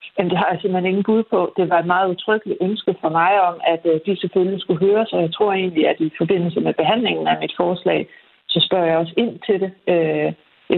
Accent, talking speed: native, 235 wpm